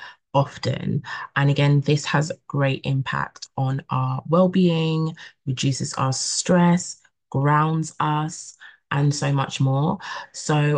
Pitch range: 130-160 Hz